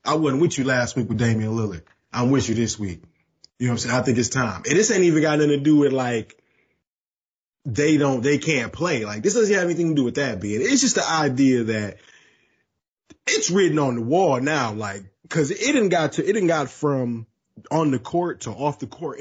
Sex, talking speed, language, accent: male, 235 wpm, English, American